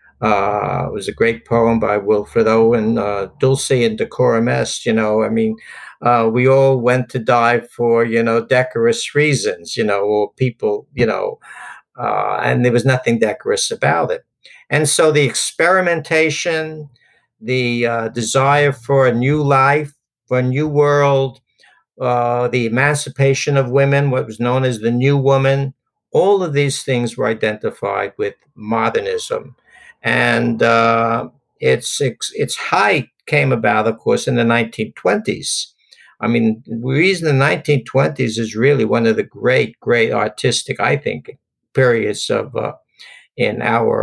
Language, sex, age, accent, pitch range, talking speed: English, male, 60-79, American, 115-150 Hz, 150 wpm